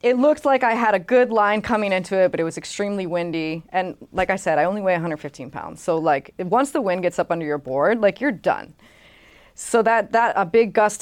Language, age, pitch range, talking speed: English, 20-39, 160-205 Hz, 240 wpm